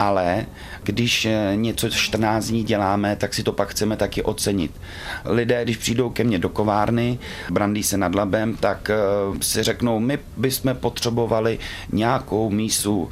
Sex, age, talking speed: male, 30-49, 145 wpm